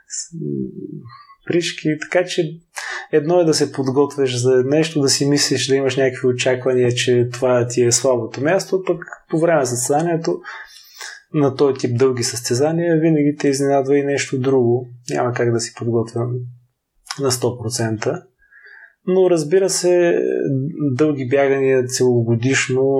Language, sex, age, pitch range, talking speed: Bulgarian, male, 20-39, 125-150 Hz, 135 wpm